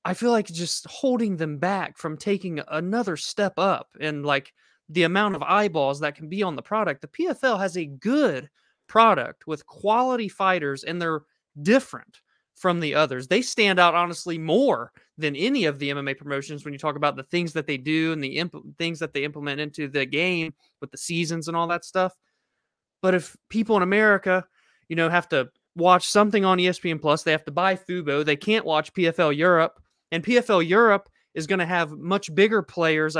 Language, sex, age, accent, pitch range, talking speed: English, male, 20-39, American, 155-195 Hz, 200 wpm